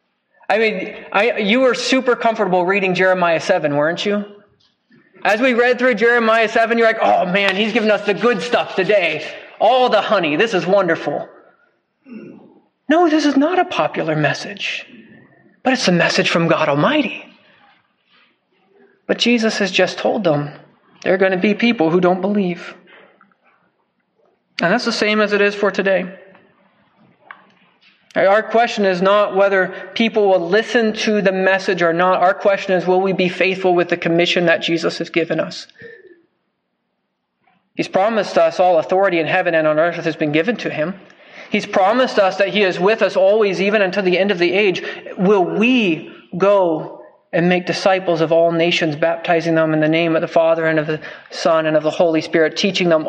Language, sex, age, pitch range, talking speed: English, male, 30-49, 170-215 Hz, 180 wpm